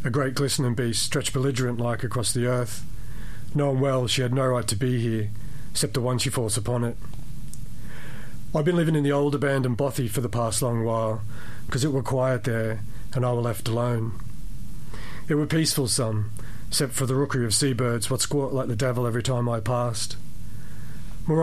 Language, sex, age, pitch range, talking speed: English, male, 40-59, 115-135 Hz, 195 wpm